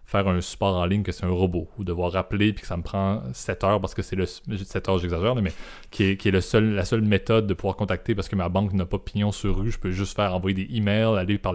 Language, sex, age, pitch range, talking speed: French, male, 20-39, 95-110 Hz, 295 wpm